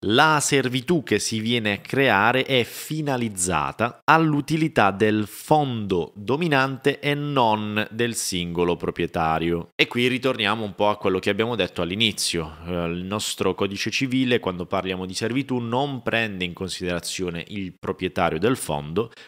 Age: 20-39